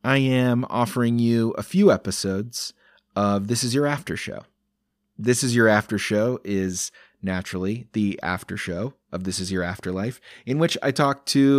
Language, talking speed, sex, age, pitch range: English, 170 wpm, male, 30-49, 95-125 Hz